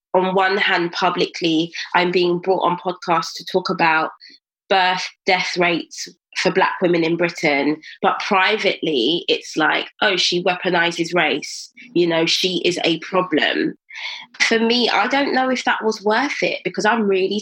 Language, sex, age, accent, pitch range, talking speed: English, female, 20-39, British, 175-225 Hz, 160 wpm